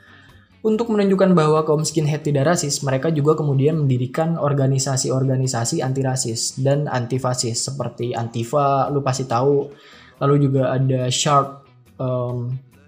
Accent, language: native, Indonesian